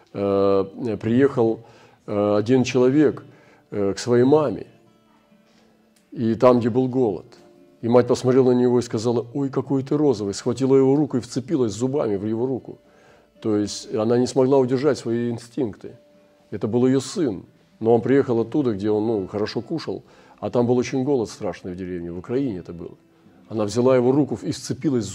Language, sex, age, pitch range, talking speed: Russian, male, 40-59, 105-125 Hz, 165 wpm